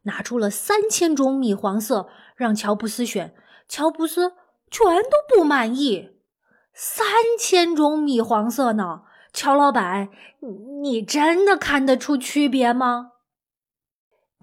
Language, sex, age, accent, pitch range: Chinese, female, 20-39, native, 225-305 Hz